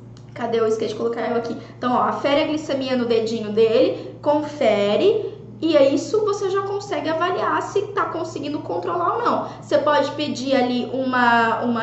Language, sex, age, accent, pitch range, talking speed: Portuguese, female, 10-29, Brazilian, 240-335 Hz, 170 wpm